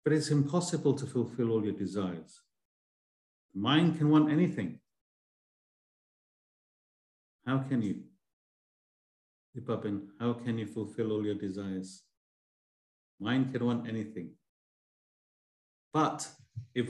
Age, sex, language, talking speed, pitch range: 50-69, male, English, 100 wpm, 100-135 Hz